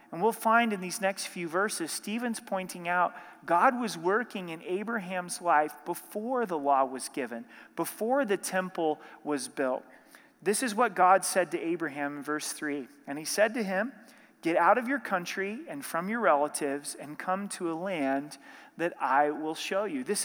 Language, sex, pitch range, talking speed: English, male, 165-215 Hz, 185 wpm